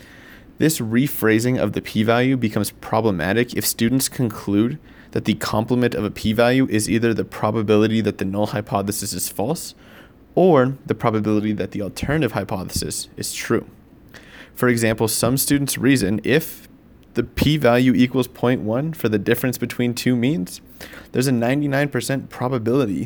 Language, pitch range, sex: English, 110-125 Hz, male